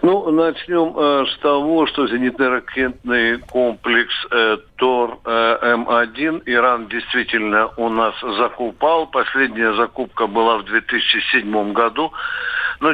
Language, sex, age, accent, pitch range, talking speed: Russian, male, 60-79, native, 125-155 Hz, 105 wpm